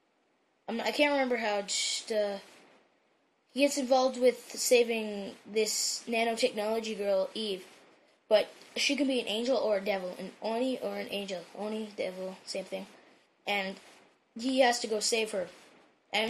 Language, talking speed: English, 150 wpm